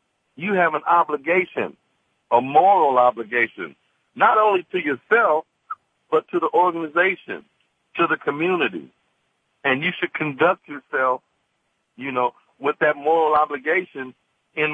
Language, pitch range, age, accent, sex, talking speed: English, 135-175 Hz, 60-79, American, male, 120 wpm